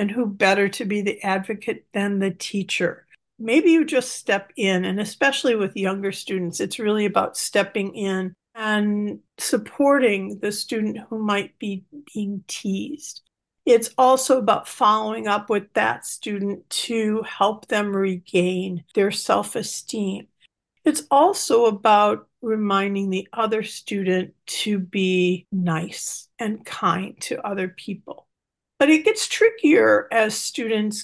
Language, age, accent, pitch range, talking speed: English, 50-69, American, 195-240 Hz, 135 wpm